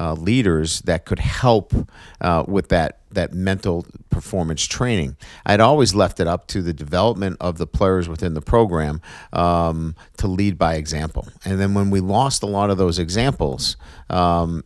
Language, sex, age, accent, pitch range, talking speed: English, male, 50-69, American, 85-105 Hz, 170 wpm